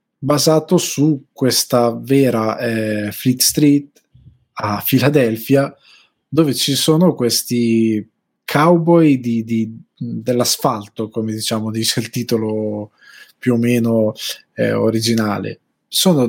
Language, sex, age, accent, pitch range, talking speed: Italian, male, 20-39, native, 115-140 Hz, 105 wpm